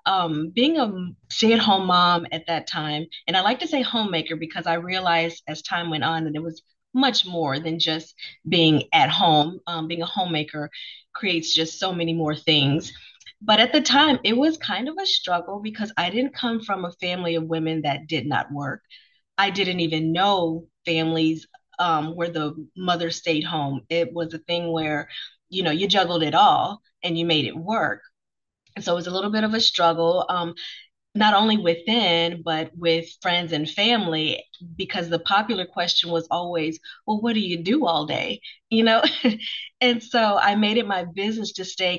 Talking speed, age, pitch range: 190 wpm, 30-49, 165-215 Hz